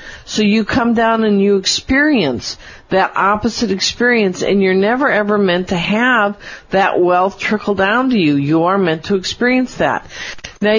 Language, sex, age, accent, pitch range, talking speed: English, female, 50-69, American, 180-230 Hz, 160 wpm